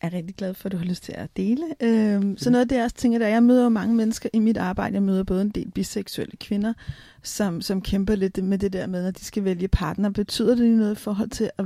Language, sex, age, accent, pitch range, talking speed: Danish, female, 30-49, native, 190-230 Hz, 285 wpm